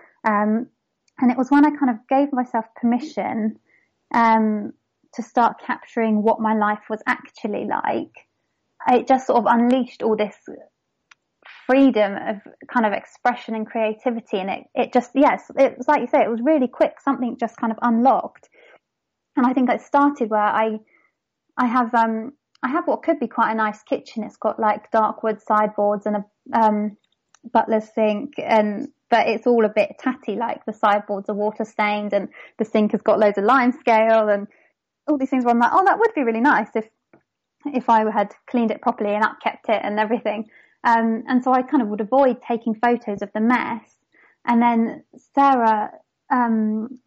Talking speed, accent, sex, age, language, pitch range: 190 wpm, British, female, 20-39, English, 220-260 Hz